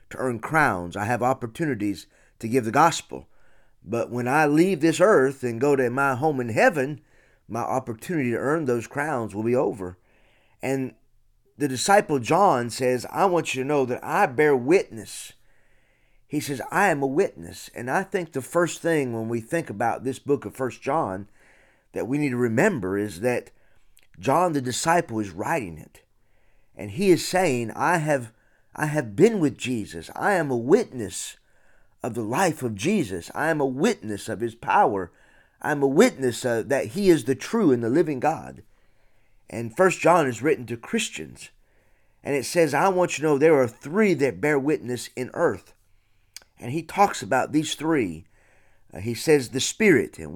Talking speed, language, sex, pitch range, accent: 185 wpm, English, male, 115-155 Hz, American